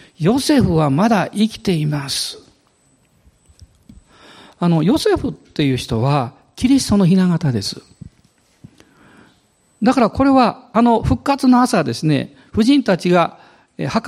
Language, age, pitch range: Japanese, 50-69, 145-235 Hz